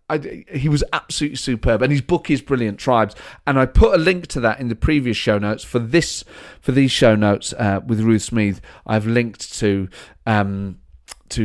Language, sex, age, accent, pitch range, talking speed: English, male, 30-49, British, 95-120 Hz, 200 wpm